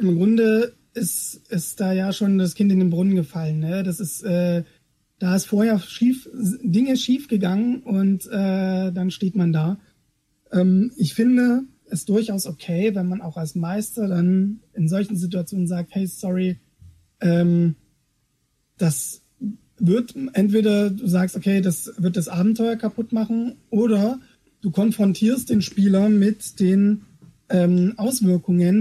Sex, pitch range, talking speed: male, 175-210 Hz, 145 wpm